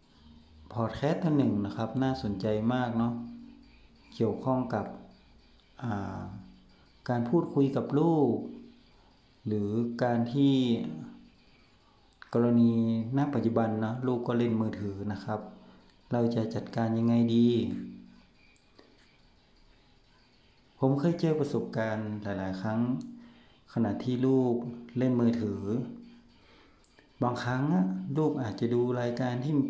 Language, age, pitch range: Thai, 60-79, 110-130 Hz